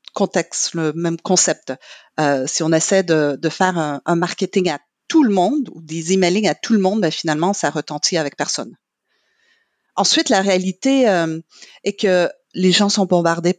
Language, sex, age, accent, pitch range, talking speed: French, female, 40-59, French, 165-210 Hz, 180 wpm